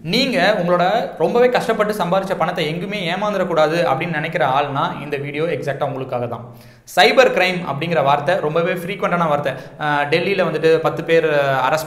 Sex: male